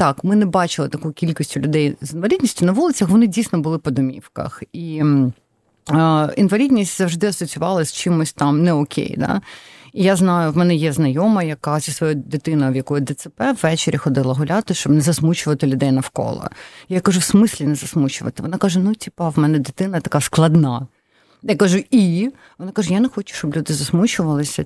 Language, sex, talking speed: Ukrainian, female, 185 wpm